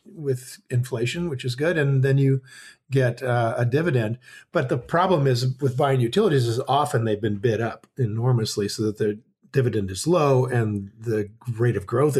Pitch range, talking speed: 115-150 Hz, 180 wpm